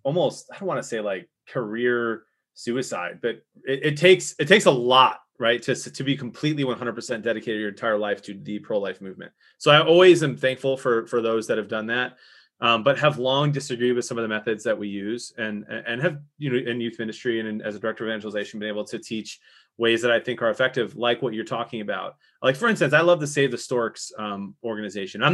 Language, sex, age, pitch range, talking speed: English, male, 20-39, 115-135 Hz, 230 wpm